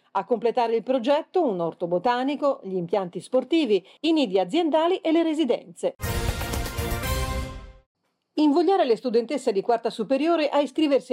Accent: native